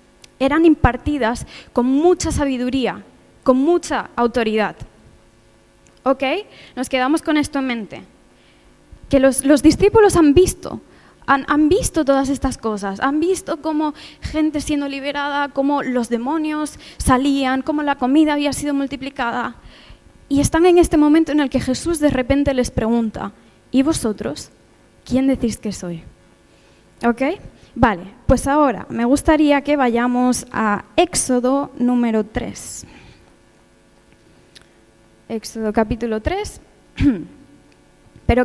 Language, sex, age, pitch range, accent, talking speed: Spanish, female, 20-39, 235-295 Hz, Spanish, 120 wpm